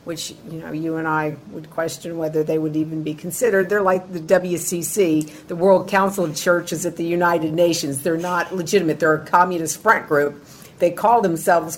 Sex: female